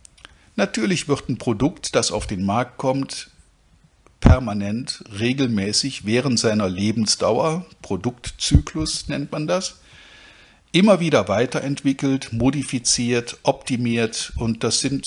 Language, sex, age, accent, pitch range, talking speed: German, male, 50-69, German, 110-140 Hz, 105 wpm